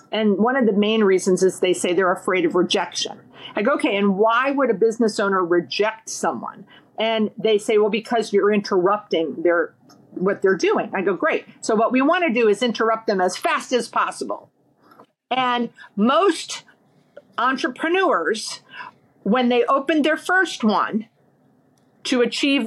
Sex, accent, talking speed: female, American, 165 wpm